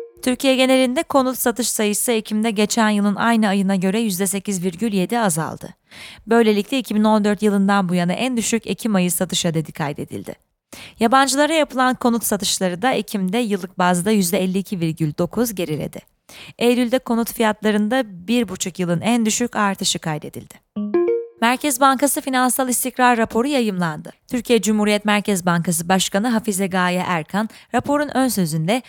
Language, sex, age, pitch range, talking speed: Turkish, female, 30-49, 185-240 Hz, 125 wpm